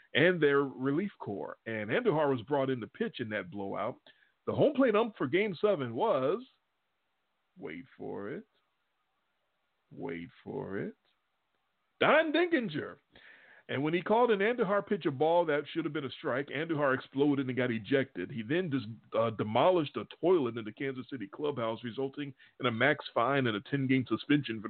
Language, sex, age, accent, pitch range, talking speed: English, male, 40-59, American, 130-195 Hz, 170 wpm